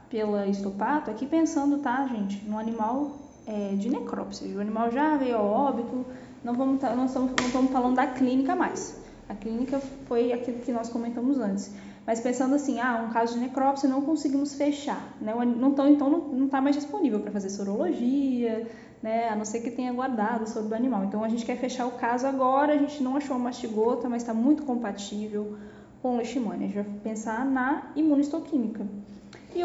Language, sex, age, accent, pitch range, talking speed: Portuguese, female, 10-29, Brazilian, 215-275 Hz, 190 wpm